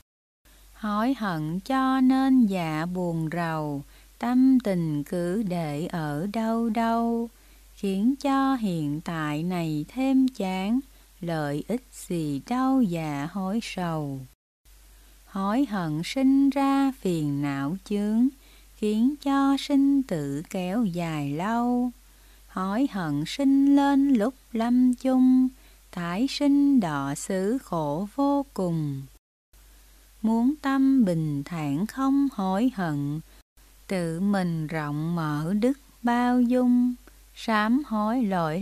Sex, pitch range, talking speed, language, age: female, 160-255 Hz, 115 wpm, Vietnamese, 20-39